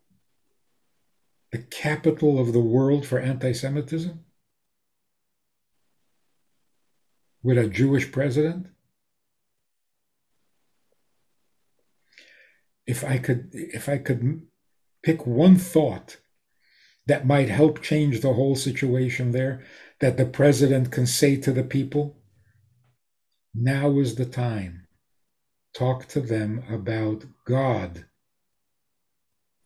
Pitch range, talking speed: 120-145 Hz, 85 wpm